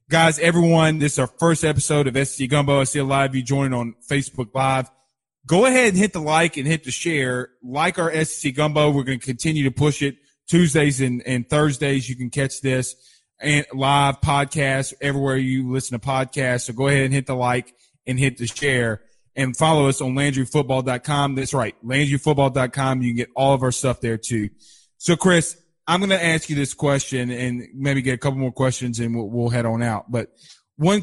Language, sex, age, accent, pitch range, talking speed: English, male, 20-39, American, 130-160 Hz, 210 wpm